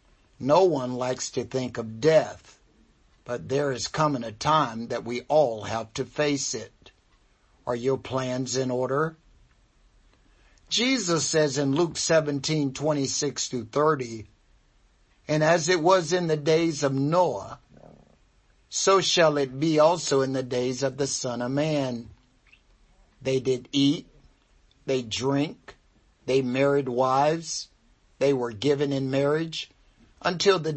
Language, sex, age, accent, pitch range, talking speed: English, male, 60-79, American, 125-155 Hz, 135 wpm